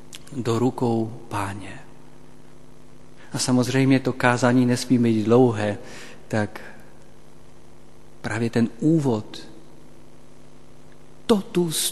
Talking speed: 75 wpm